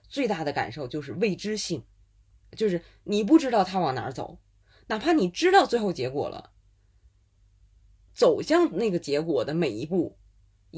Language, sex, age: Chinese, female, 20-39